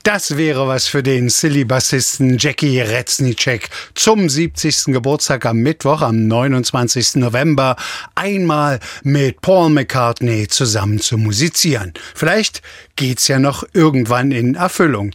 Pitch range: 120-155 Hz